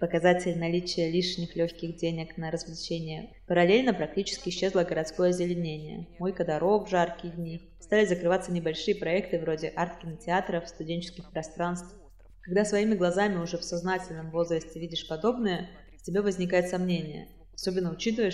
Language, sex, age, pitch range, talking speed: Russian, female, 20-39, 165-200 Hz, 130 wpm